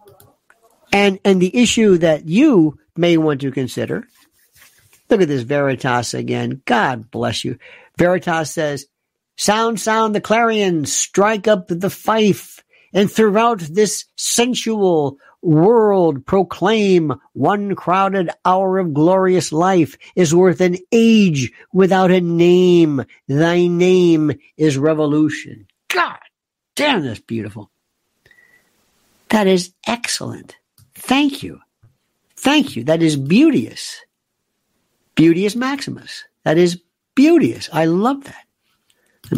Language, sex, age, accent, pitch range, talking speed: English, male, 60-79, American, 155-220 Hz, 115 wpm